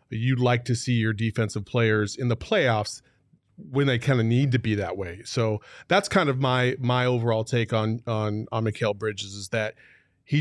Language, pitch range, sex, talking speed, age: English, 115-145 Hz, male, 200 wpm, 30-49